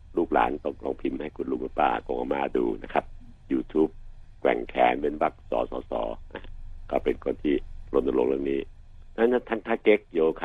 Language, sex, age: Thai, male, 60-79